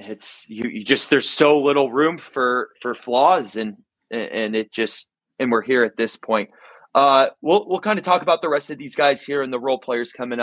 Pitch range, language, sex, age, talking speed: 120-165 Hz, English, male, 20-39, 225 wpm